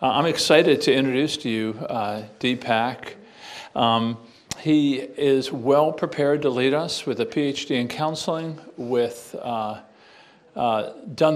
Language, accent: English, American